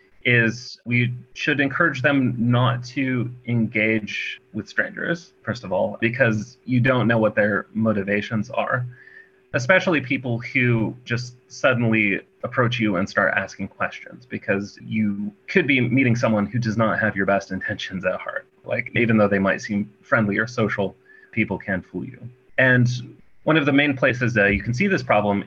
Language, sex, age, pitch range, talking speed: English, male, 30-49, 100-125 Hz, 170 wpm